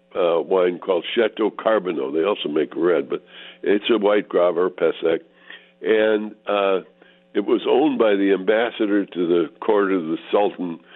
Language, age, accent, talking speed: English, 60-79, American, 160 wpm